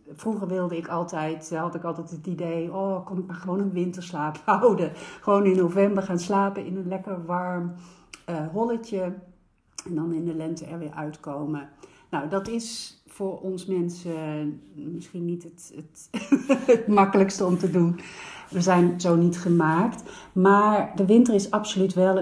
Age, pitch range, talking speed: 60-79, 160-200 Hz, 165 wpm